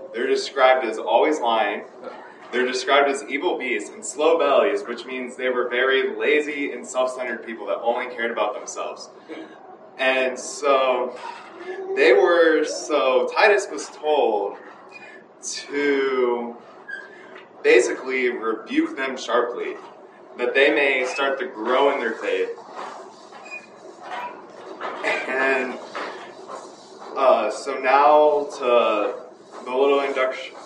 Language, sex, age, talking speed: English, male, 20-39, 110 wpm